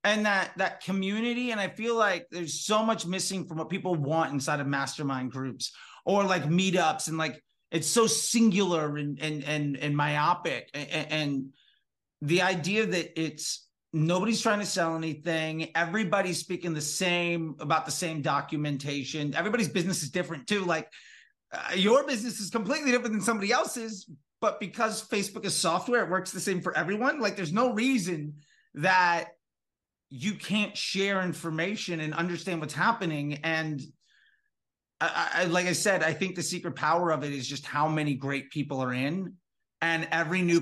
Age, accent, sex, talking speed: 30-49, American, male, 170 wpm